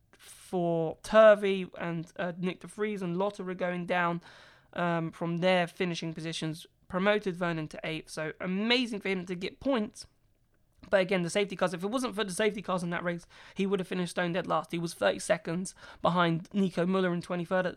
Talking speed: 205 wpm